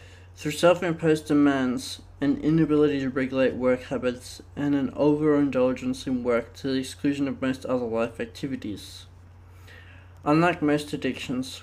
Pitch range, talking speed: 100-145 Hz, 130 wpm